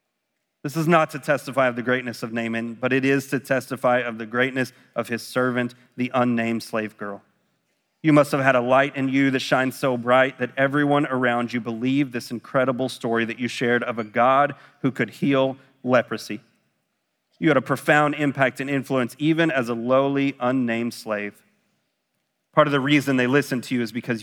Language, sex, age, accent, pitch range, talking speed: English, male, 30-49, American, 120-140 Hz, 195 wpm